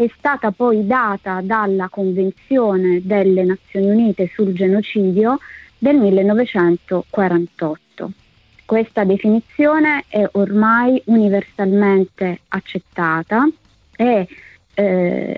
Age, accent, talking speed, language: 20-39, native, 80 wpm, Italian